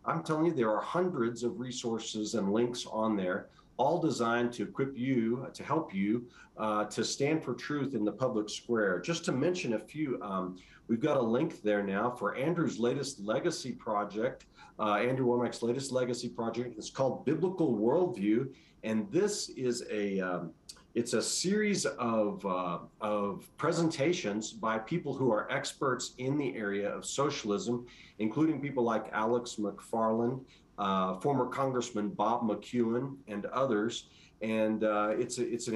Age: 40-59